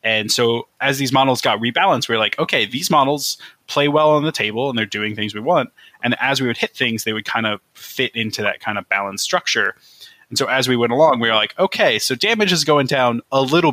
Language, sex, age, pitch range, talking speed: English, male, 20-39, 110-140 Hz, 255 wpm